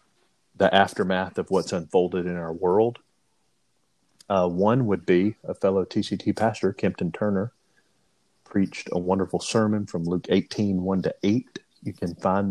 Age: 40-59